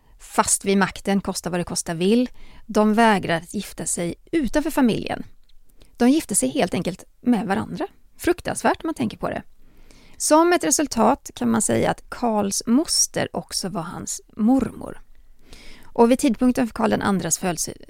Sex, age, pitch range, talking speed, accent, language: female, 30-49, 185-240 Hz, 165 wpm, Swedish, English